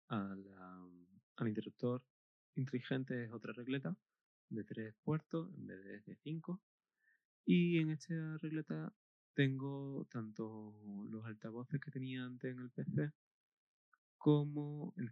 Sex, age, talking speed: male, 20-39, 125 wpm